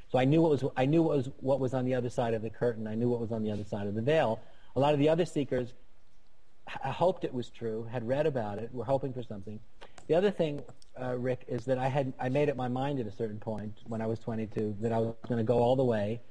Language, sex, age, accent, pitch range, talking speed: English, male, 40-59, American, 115-130 Hz, 290 wpm